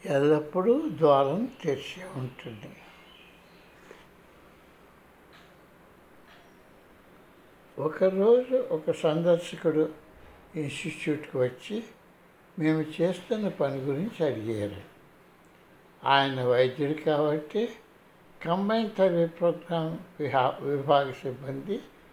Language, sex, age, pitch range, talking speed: Telugu, male, 60-79, 145-185 Hz, 55 wpm